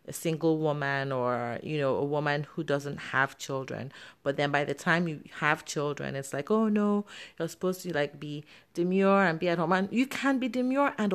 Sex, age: female, 30-49